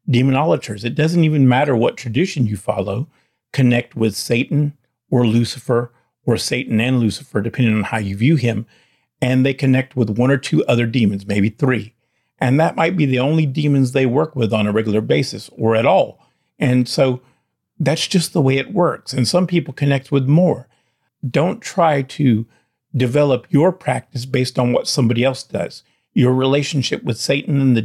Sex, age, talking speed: male, 50-69, 180 wpm